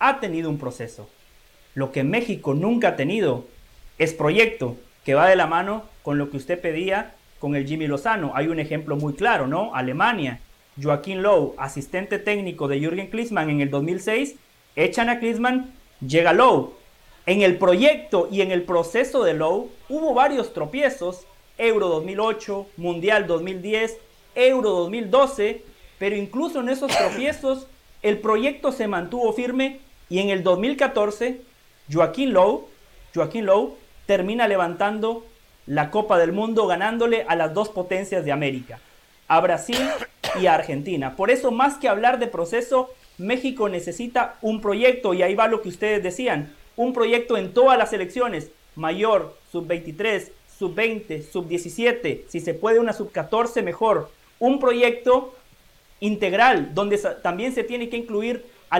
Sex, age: male, 40-59